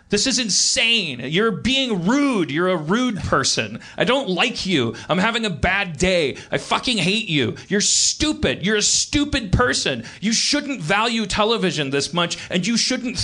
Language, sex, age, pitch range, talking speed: English, male, 40-59, 190-300 Hz, 170 wpm